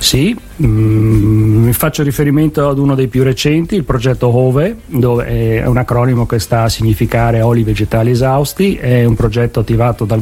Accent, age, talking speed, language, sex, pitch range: native, 40-59, 165 wpm, Italian, male, 110-130 Hz